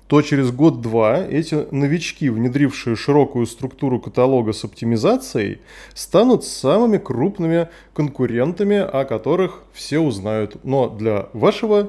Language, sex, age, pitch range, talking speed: Russian, male, 20-39, 120-165 Hz, 110 wpm